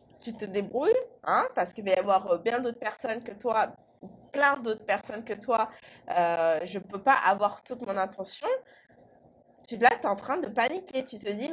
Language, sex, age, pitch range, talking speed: French, female, 20-39, 205-270 Hz, 205 wpm